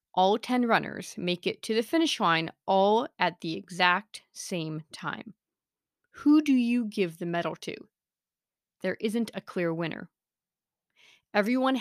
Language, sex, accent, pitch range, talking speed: English, female, American, 180-240 Hz, 140 wpm